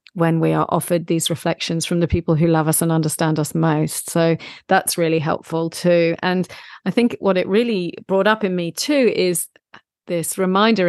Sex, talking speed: female, 195 wpm